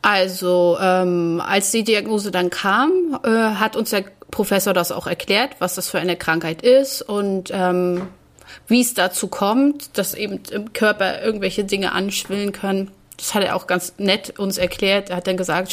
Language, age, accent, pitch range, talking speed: German, 30-49, German, 185-225 Hz, 180 wpm